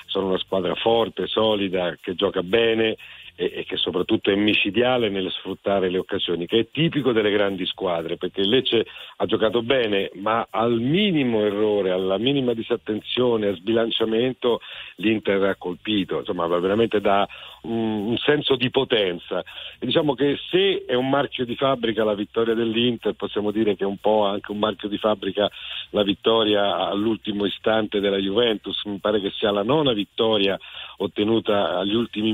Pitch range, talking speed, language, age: 100-120 Hz, 160 wpm, Italian, 50-69